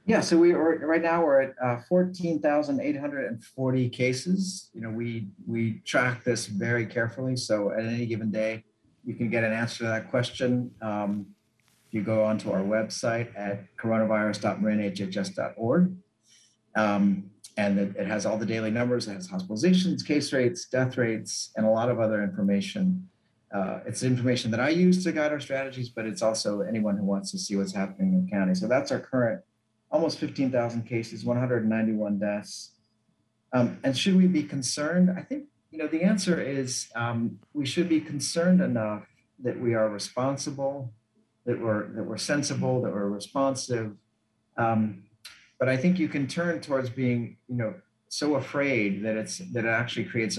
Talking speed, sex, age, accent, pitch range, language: 175 wpm, male, 50-69, American, 110-140 Hz, English